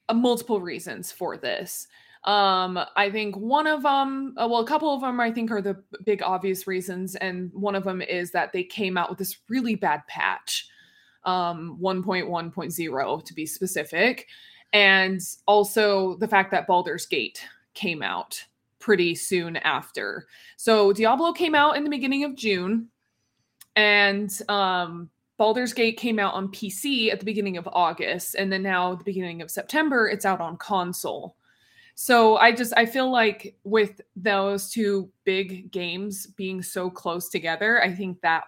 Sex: female